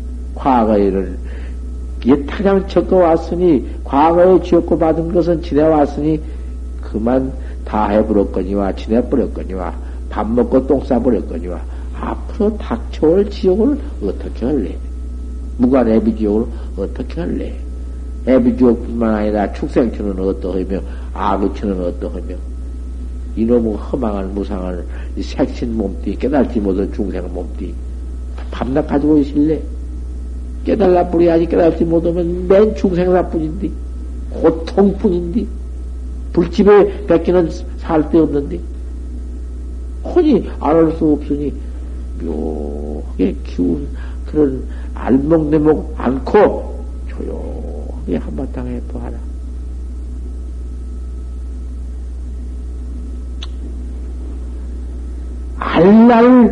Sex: male